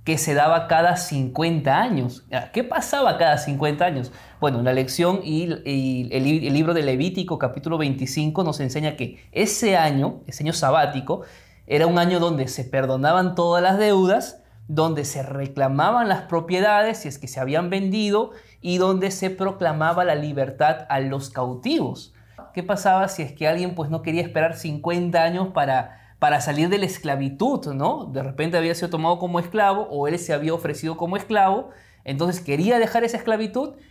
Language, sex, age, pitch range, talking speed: Spanish, male, 20-39, 140-180 Hz, 170 wpm